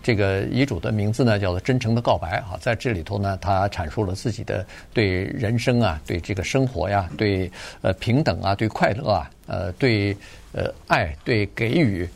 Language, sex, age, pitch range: Chinese, male, 50-69, 100-125 Hz